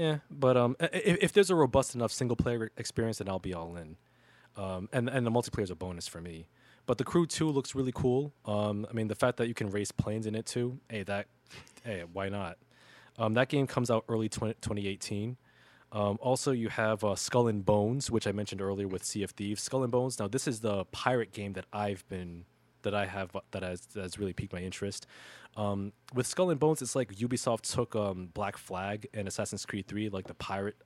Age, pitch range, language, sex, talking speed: 20-39, 95-120 Hz, English, male, 230 wpm